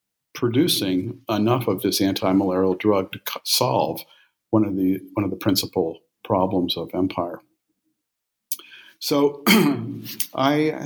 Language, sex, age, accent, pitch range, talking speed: English, male, 50-69, American, 100-125 Hz, 110 wpm